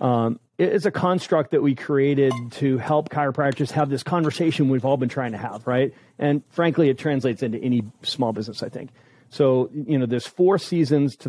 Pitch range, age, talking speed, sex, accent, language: 125-145 Hz, 40-59, 200 wpm, male, American, English